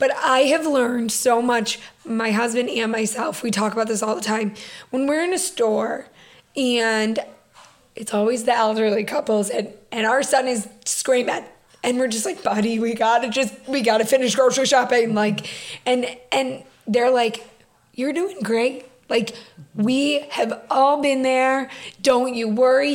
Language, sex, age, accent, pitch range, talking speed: English, female, 20-39, American, 225-260 Hz, 165 wpm